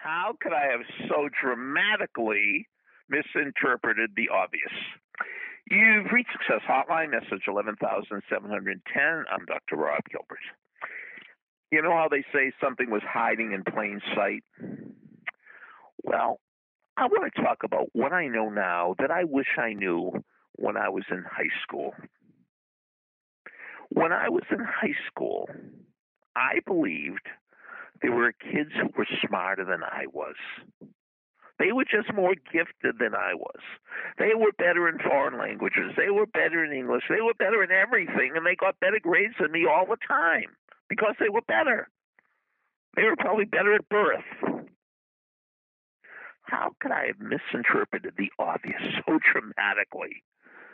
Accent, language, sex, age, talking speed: American, English, male, 50-69, 145 wpm